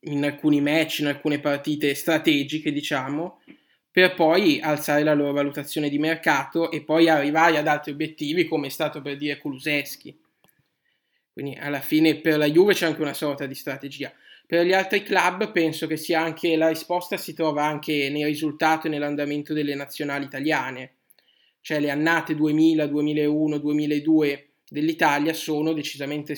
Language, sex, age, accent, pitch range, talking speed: Italian, male, 10-29, native, 145-155 Hz, 155 wpm